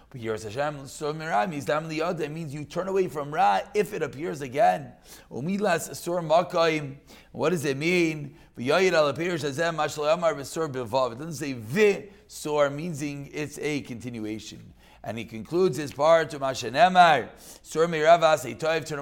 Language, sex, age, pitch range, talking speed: English, male, 40-59, 145-180 Hz, 100 wpm